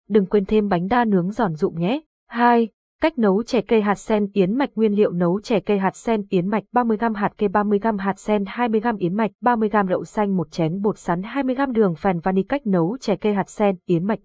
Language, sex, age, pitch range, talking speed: Vietnamese, female, 20-39, 185-230 Hz, 230 wpm